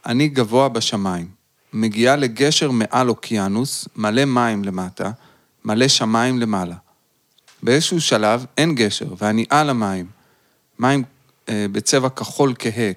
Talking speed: 115 wpm